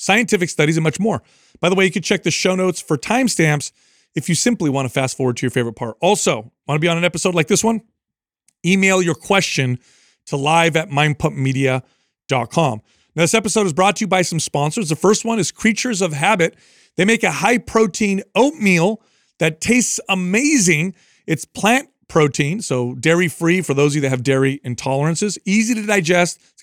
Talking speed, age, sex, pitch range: 195 wpm, 40-59, male, 155-205 Hz